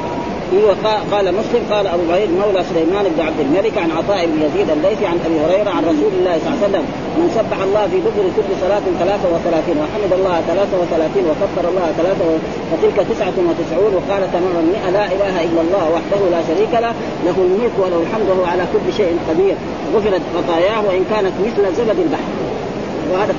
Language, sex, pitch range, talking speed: Arabic, female, 185-230 Hz, 170 wpm